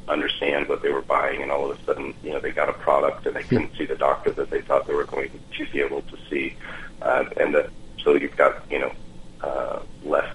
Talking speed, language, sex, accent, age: 245 wpm, English, male, American, 40-59